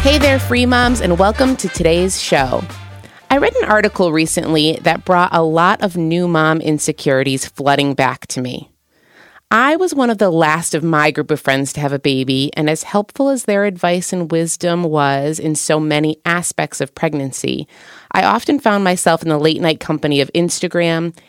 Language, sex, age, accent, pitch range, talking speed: English, female, 30-49, American, 140-180 Hz, 185 wpm